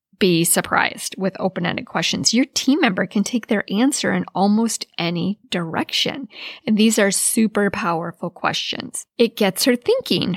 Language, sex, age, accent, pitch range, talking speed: English, female, 10-29, American, 190-250 Hz, 150 wpm